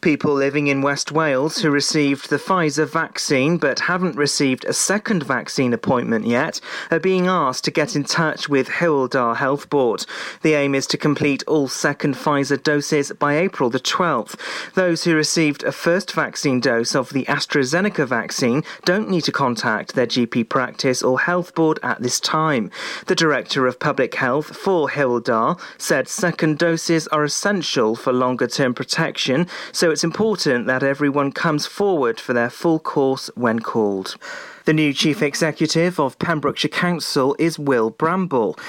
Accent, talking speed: British, 165 wpm